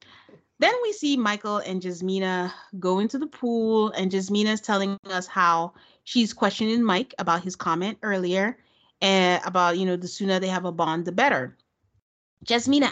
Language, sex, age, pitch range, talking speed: English, female, 30-49, 180-220 Hz, 165 wpm